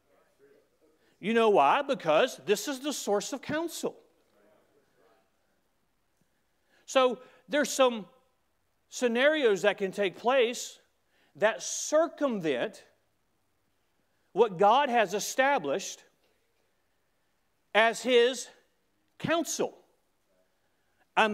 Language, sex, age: English, male, 40-59